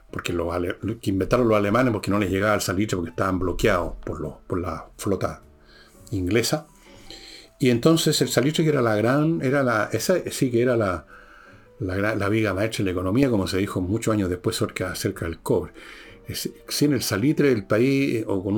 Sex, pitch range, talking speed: male, 95-130 Hz, 200 wpm